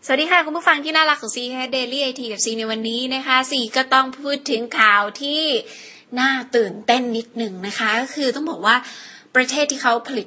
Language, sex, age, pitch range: Thai, female, 20-39, 215-260 Hz